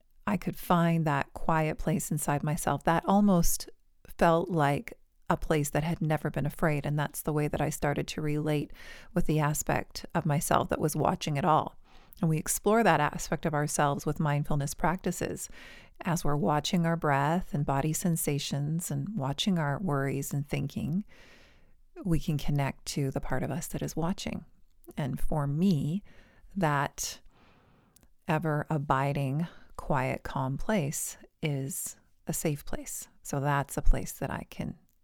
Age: 40-59